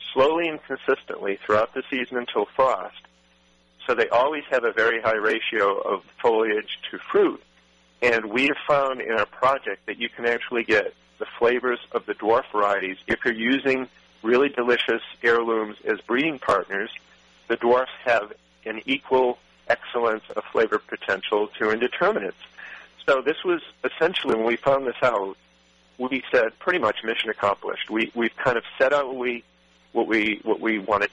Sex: male